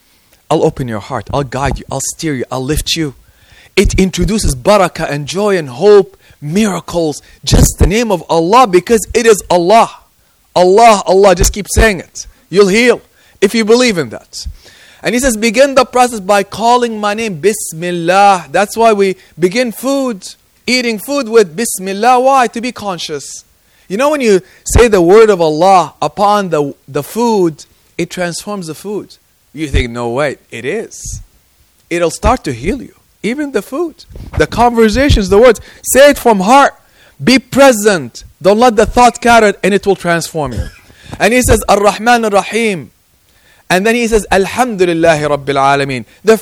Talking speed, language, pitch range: 170 wpm, English, 160-230 Hz